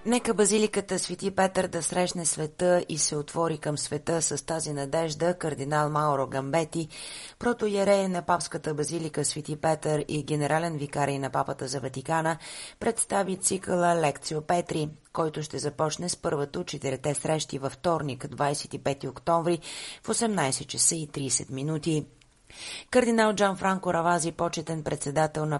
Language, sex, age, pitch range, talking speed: Bulgarian, female, 30-49, 150-175 Hz, 140 wpm